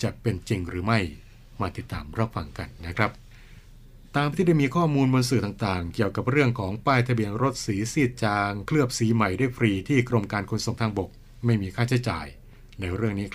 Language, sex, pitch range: Thai, male, 100-120 Hz